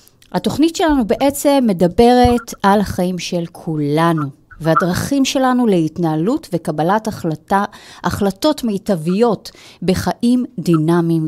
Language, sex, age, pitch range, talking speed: Hebrew, female, 30-49, 160-230 Hz, 90 wpm